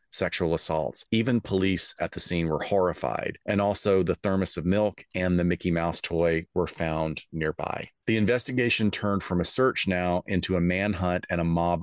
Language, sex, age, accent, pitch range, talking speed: English, male, 40-59, American, 85-100 Hz, 185 wpm